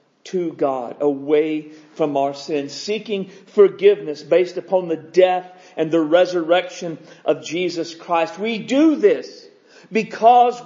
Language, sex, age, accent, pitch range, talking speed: English, male, 50-69, American, 215-315 Hz, 125 wpm